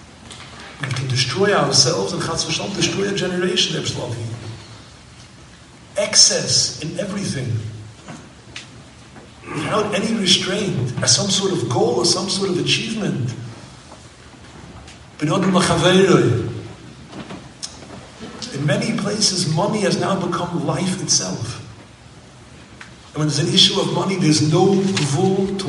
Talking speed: 100 wpm